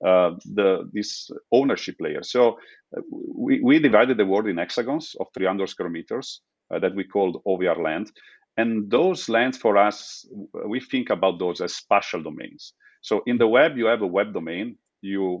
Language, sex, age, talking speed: English, male, 40-59, 180 wpm